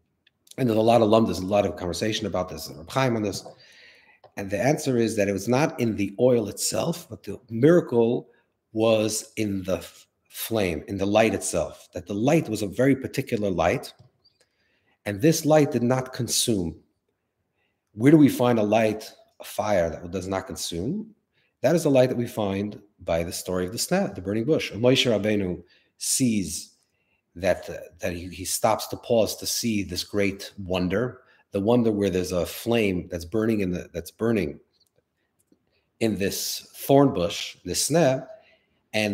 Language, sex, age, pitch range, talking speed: English, male, 40-59, 100-135 Hz, 180 wpm